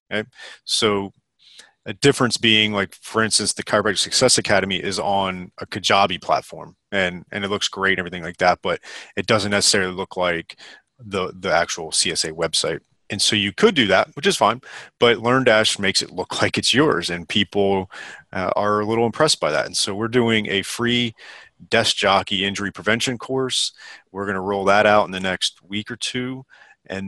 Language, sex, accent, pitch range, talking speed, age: English, male, American, 95-110 Hz, 195 wpm, 30-49